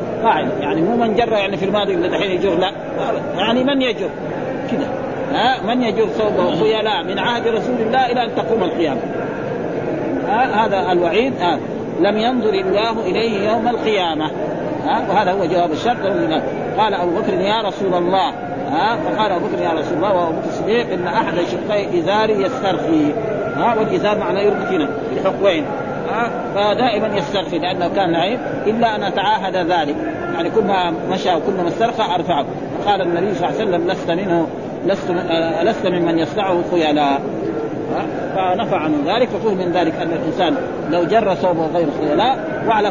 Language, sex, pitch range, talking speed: Arabic, male, 175-230 Hz, 165 wpm